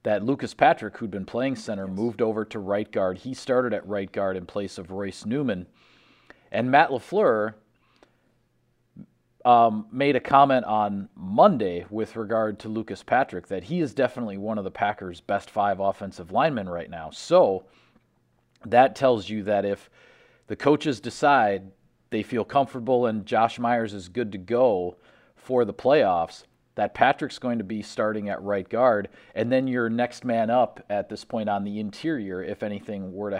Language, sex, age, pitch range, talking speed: English, male, 40-59, 100-120 Hz, 175 wpm